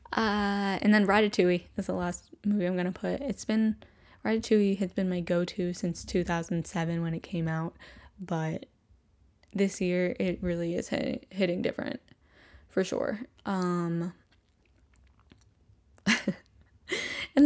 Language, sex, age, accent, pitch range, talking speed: English, female, 10-29, American, 170-230 Hz, 125 wpm